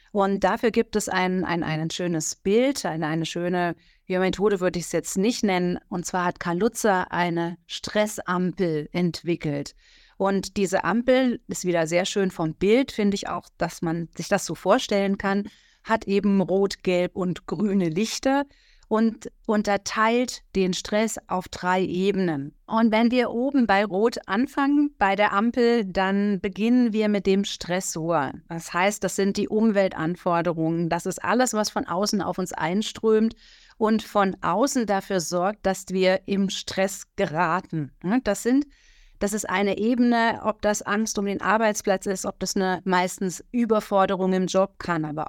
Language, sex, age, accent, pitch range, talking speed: German, female, 30-49, German, 180-215 Hz, 165 wpm